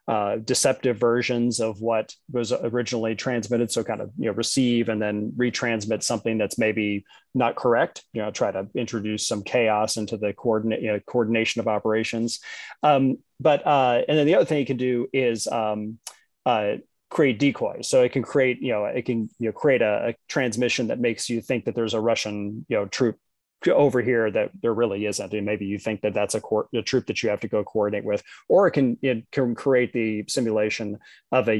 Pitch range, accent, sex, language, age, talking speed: 110-130 Hz, American, male, English, 30-49, 210 wpm